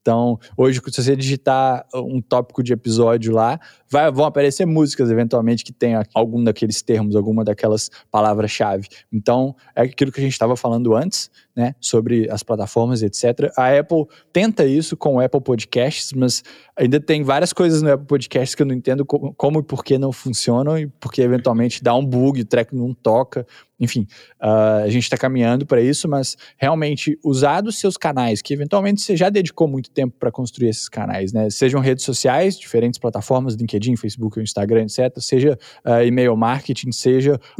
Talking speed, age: 180 wpm, 20-39